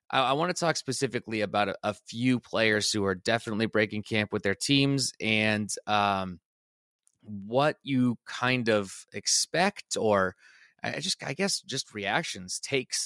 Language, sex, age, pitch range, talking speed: English, male, 20-39, 105-125 Hz, 145 wpm